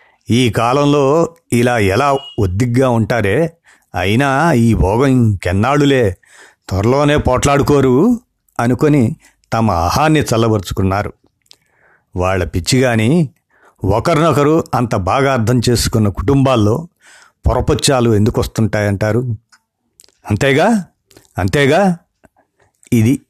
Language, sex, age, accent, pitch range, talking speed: Telugu, male, 50-69, native, 105-135 Hz, 75 wpm